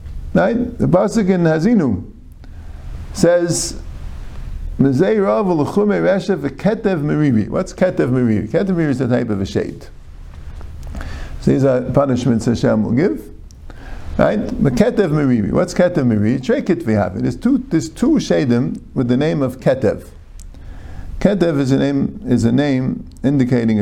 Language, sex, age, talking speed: English, male, 50-69, 125 wpm